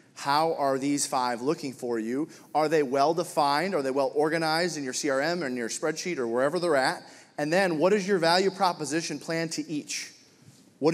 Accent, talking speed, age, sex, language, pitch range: American, 205 wpm, 30-49, male, English, 135-180 Hz